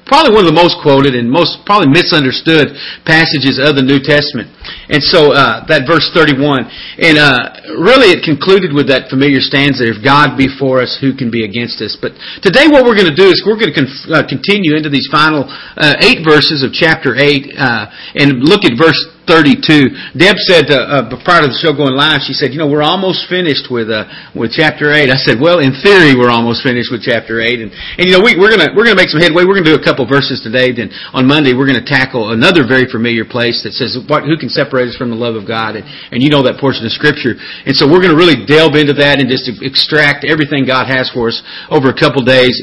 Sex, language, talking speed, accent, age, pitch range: male, English, 240 wpm, American, 40-59, 125-150 Hz